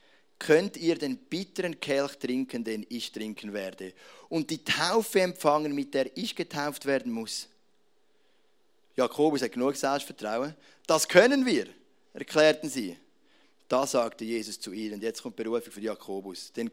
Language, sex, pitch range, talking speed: German, male, 115-155 Hz, 150 wpm